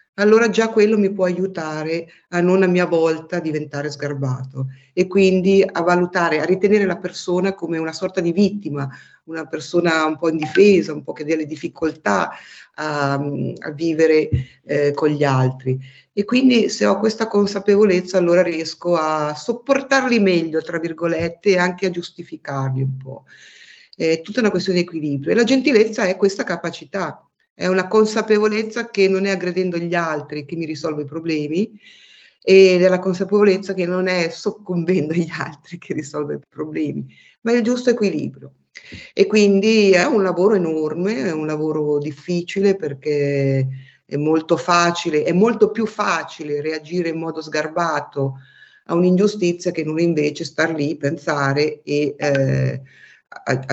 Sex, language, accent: female, Italian, native